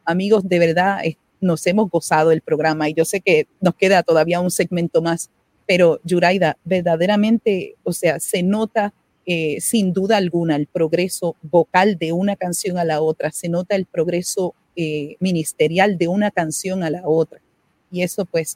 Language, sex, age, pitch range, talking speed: Spanish, female, 40-59, 165-200 Hz, 170 wpm